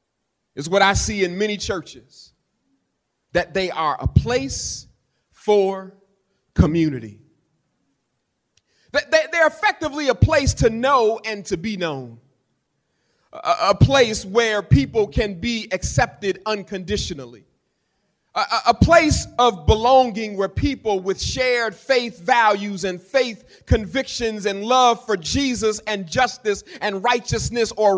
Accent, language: American, English